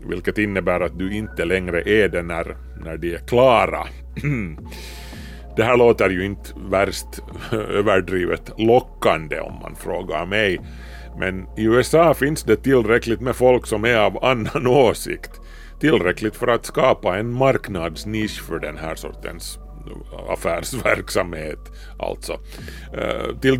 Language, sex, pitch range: Swedish, male, 90-125 Hz